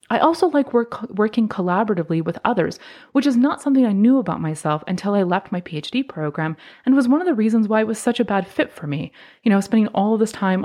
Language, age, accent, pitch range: English, 30-49, American, 175-240 Hz